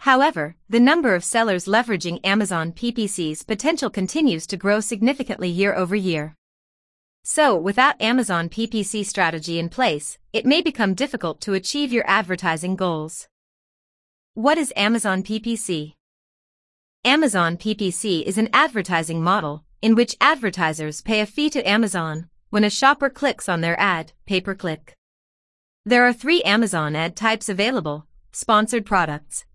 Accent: American